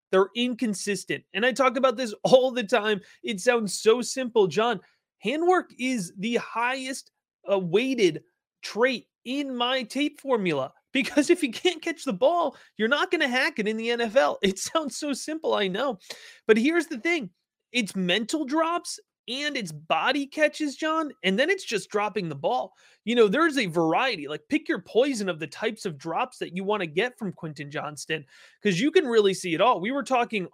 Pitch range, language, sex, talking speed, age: 195-285 Hz, English, male, 195 wpm, 30-49